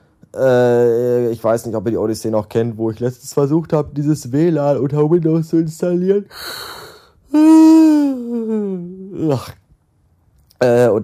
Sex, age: male, 30-49